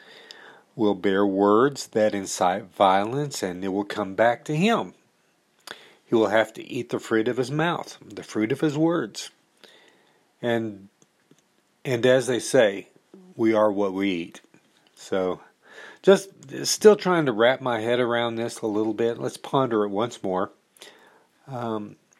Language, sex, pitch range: English, male, 105-135 Hz